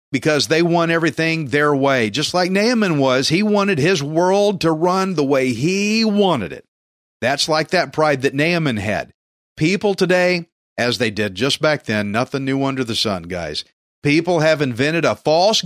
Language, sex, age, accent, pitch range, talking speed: English, male, 50-69, American, 135-180 Hz, 180 wpm